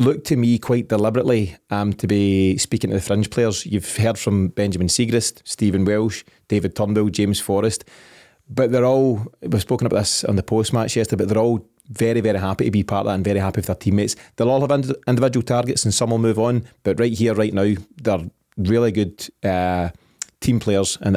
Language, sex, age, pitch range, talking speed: English, male, 30-49, 100-120 Hz, 215 wpm